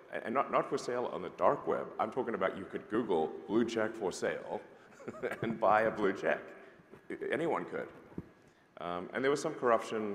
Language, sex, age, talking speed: English, male, 40-59, 190 wpm